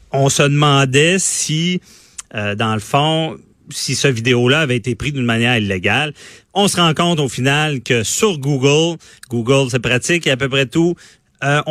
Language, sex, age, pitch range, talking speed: French, male, 40-59, 115-150 Hz, 180 wpm